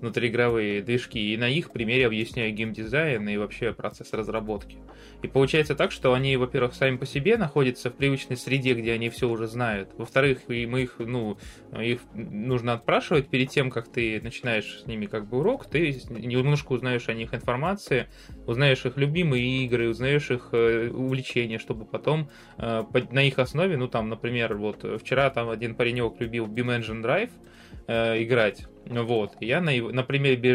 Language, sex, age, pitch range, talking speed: Russian, male, 20-39, 115-135 Hz, 165 wpm